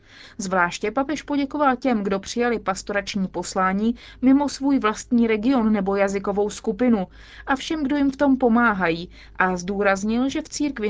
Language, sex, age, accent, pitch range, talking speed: Czech, female, 30-49, native, 195-255 Hz, 150 wpm